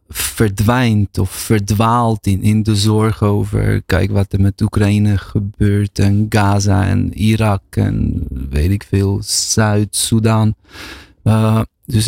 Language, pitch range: Dutch, 95-120 Hz